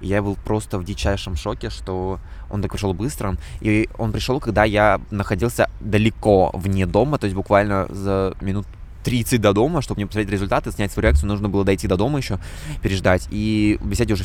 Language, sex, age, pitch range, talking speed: Russian, male, 20-39, 95-110 Hz, 190 wpm